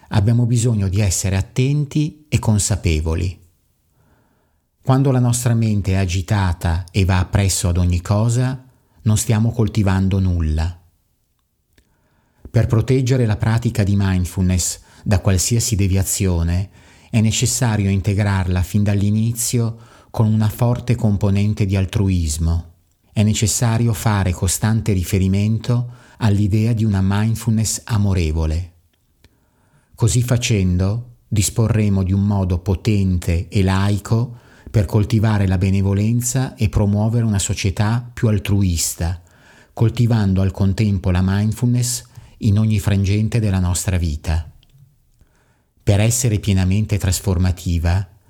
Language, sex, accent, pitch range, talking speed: Italian, male, native, 95-115 Hz, 110 wpm